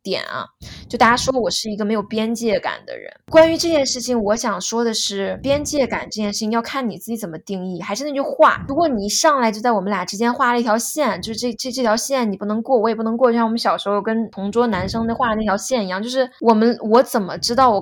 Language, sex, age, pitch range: Chinese, female, 20-39, 205-260 Hz